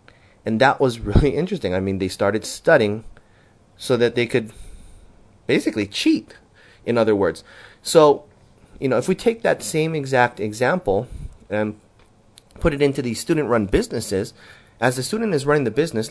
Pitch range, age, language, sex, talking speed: 105-135 Hz, 30-49, English, male, 160 wpm